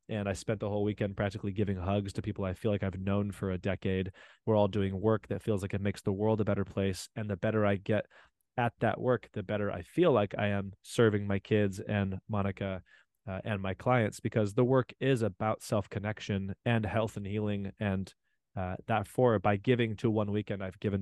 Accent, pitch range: American, 100-115 Hz